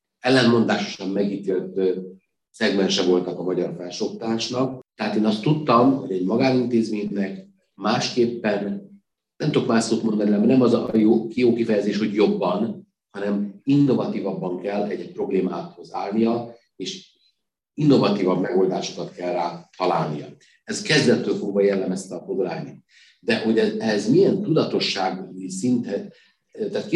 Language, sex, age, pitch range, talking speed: Hungarian, male, 50-69, 100-125 Hz, 120 wpm